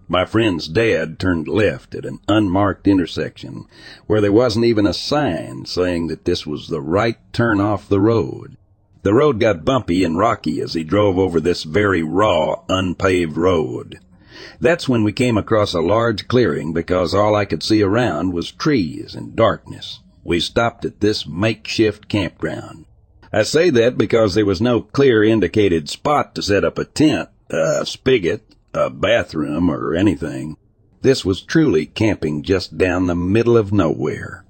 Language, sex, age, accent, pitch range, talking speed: English, male, 60-79, American, 85-110 Hz, 165 wpm